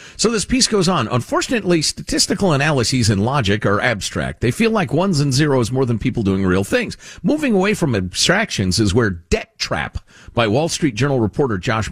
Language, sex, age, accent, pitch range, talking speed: English, male, 50-69, American, 115-190 Hz, 190 wpm